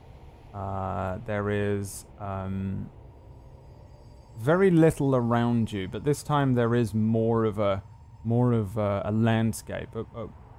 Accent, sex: British, male